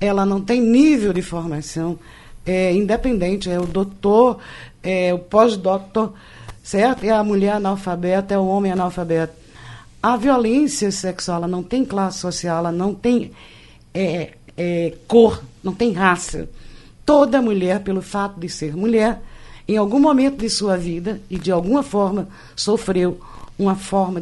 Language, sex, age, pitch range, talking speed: Portuguese, female, 50-69, 175-230 Hz, 150 wpm